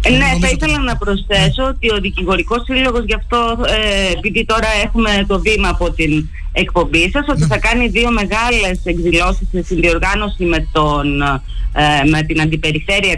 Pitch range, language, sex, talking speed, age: 170-220 Hz, Greek, female, 165 wpm, 30-49